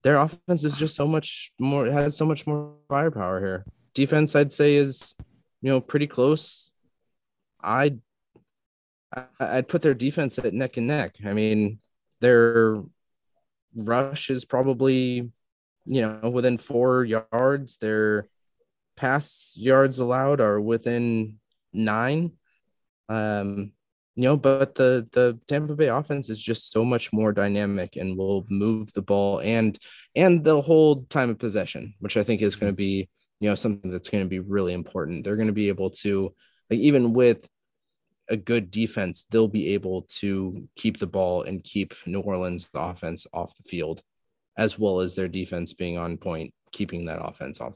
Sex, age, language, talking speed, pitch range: male, 20-39, English, 165 wpm, 100-135 Hz